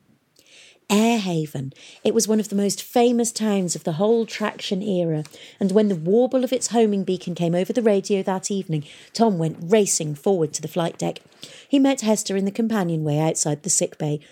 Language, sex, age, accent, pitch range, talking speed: English, female, 40-59, British, 155-205 Hz, 195 wpm